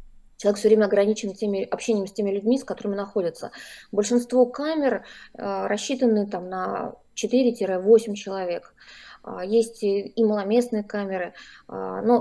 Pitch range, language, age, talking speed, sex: 200-240 Hz, Russian, 20-39, 135 wpm, female